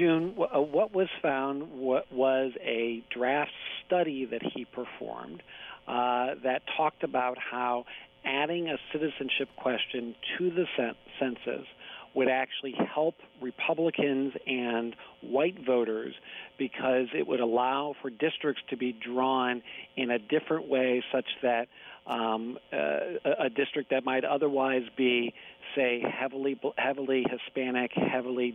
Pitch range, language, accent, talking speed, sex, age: 125-140 Hz, English, American, 125 wpm, male, 50-69